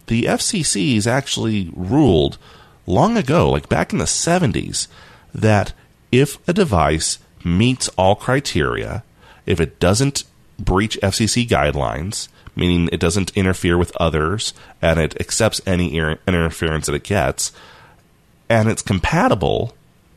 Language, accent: English, American